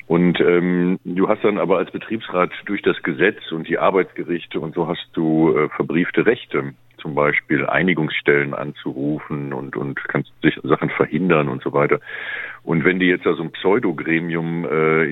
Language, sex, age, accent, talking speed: German, male, 50-69, German, 170 wpm